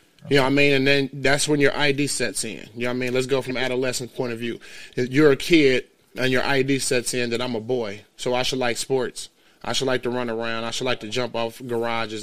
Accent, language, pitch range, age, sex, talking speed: American, English, 120-145 Hz, 20-39, male, 275 wpm